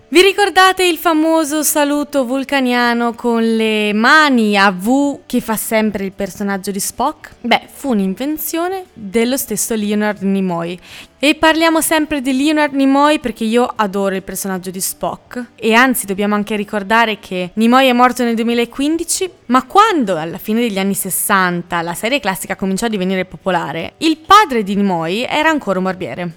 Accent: native